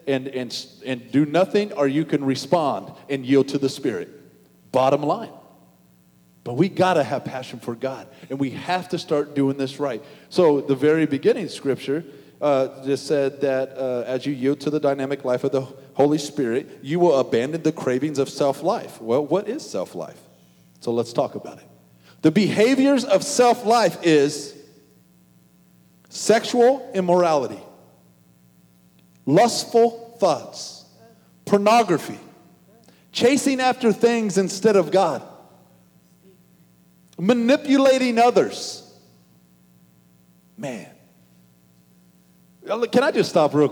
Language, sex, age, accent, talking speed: English, male, 40-59, American, 130 wpm